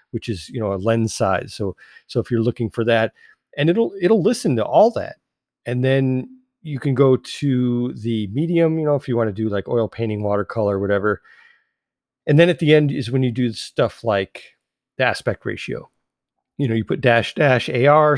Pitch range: 110-140 Hz